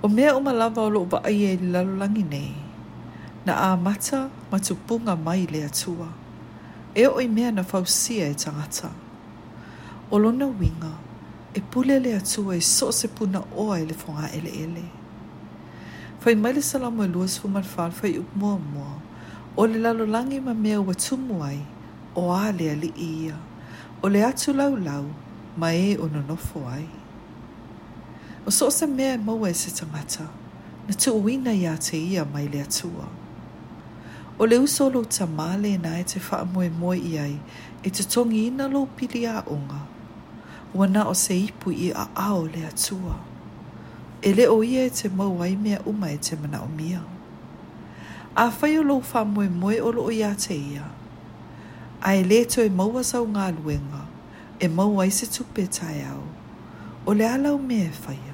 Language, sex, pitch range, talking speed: English, female, 155-225 Hz, 160 wpm